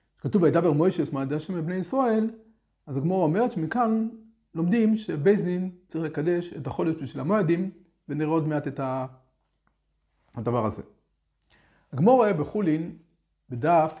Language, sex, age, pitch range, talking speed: Hebrew, male, 40-59, 135-195 Hz, 135 wpm